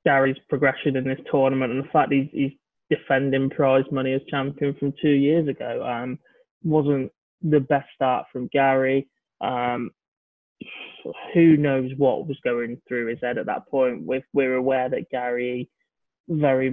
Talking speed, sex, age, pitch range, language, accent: 160 wpm, male, 20-39, 130-145 Hz, English, British